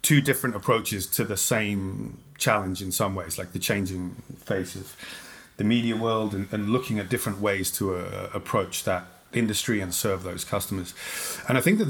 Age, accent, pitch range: 30-49, British, 95-120 Hz